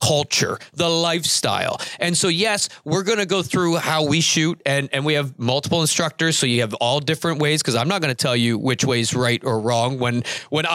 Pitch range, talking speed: 130-170 Hz, 230 wpm